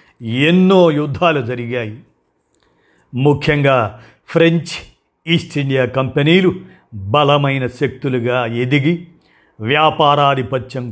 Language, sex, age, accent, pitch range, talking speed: Telugu, male, 50-69, native, 125-150 Hz, 65 wpm